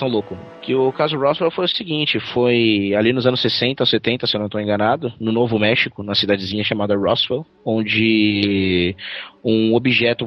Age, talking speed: 20-39, 170 wpm